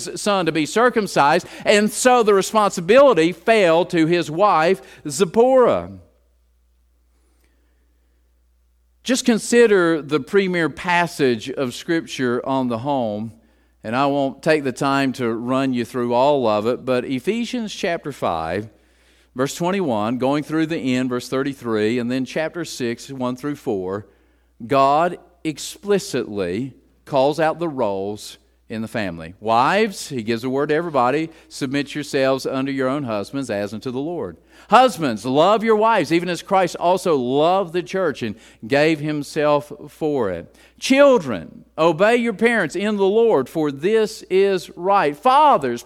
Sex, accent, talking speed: male, American, 145 wpm